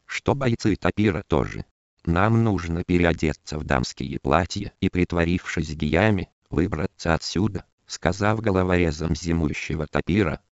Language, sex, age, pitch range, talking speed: Russian, male, 50-69, 80-105 Hz, 110 wpm